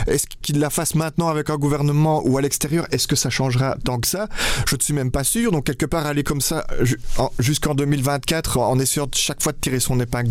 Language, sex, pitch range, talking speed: French, male, 120-150 Hz, 235 wpm